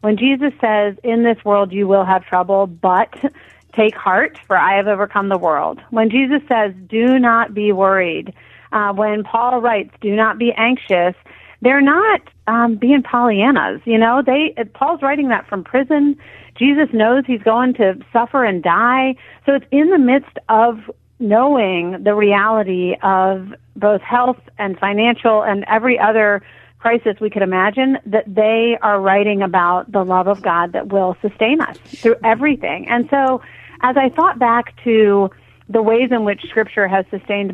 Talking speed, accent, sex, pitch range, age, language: 170 wpm, American, female, 195-240 Hz, 40-59, English